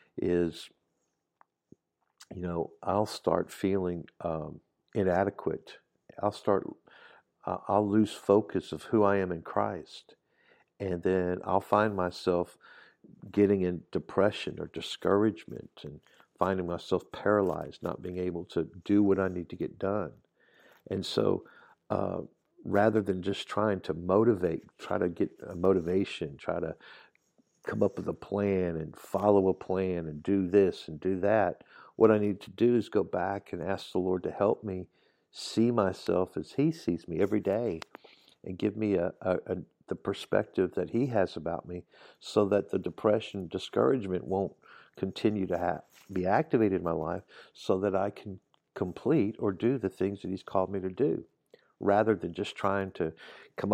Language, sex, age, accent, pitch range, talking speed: English, male, 50-69, American, 90-100 Hz, 160 wpm